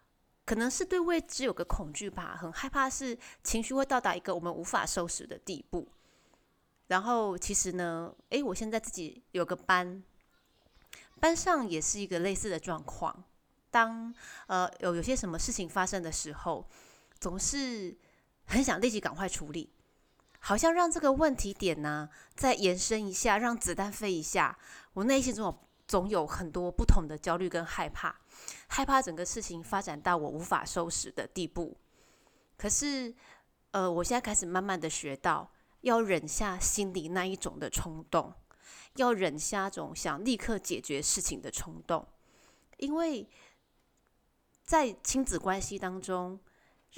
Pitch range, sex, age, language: 175-245 Hz, female, 20-39, Chinese